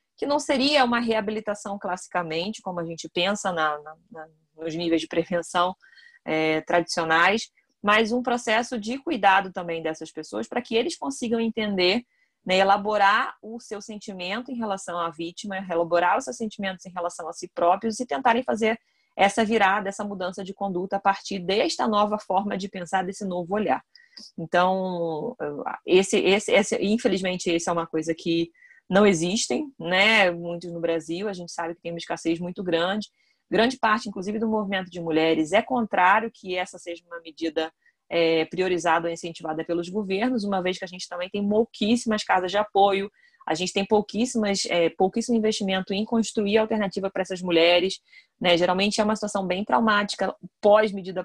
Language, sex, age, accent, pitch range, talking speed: Portuguese, female, 20-39, Brazilian, 175-215 Hz, 170 wpm